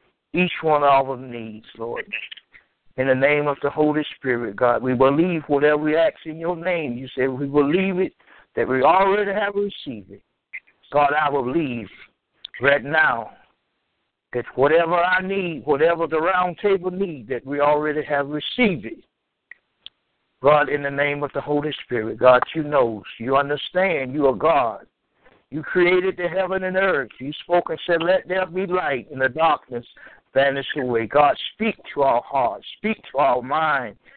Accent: American